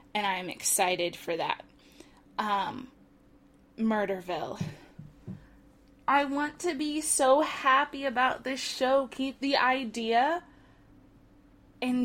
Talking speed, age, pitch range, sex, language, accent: 100 wpm, 20-39, 225-310 Hz, female, English, American